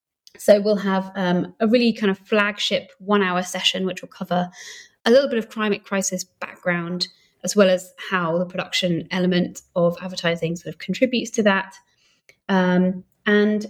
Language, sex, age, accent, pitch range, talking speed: English, female, 20-39, British, 180-210 Hz, 160 wpm